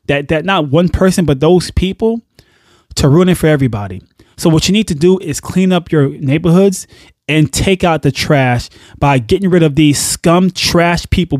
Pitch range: 130-170 Hz